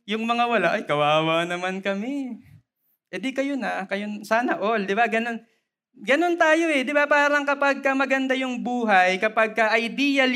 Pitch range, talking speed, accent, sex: 160-230 Hz, 175 wpm, native, male